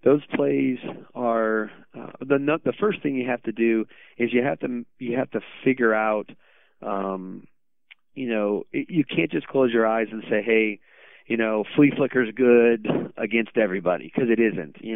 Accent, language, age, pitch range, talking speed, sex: American, English, 30-49, 105-120 Hz, 180 wpm, male